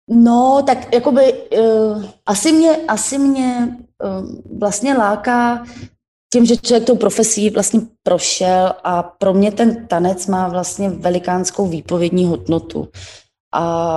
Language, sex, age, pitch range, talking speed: Slovak, female, 20-39, 165-200 Hz, 125 wpm